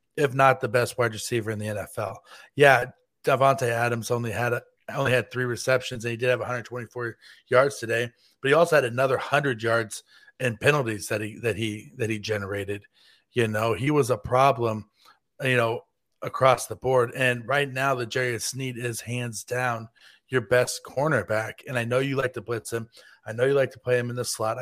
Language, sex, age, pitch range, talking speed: English, male, 40-59, 115-140 Hz, 200 wpm